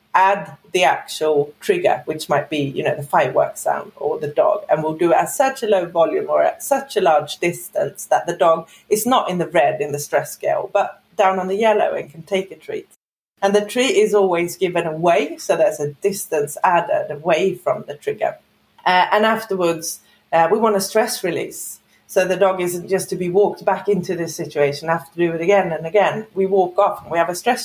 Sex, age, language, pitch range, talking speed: female, 30-49, English, 165-210 Hz, 225 wpm